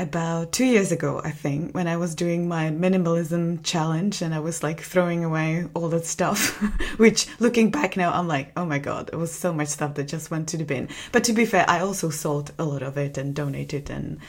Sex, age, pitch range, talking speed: female, 20-39, 165-195 Hz, 235 wpm